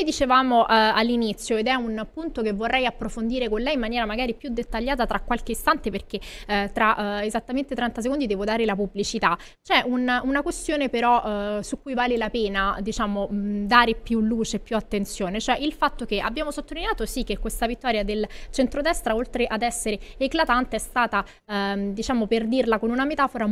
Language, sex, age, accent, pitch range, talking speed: Italian, female, 20-39, native, 215-260 Hz, 185 wpm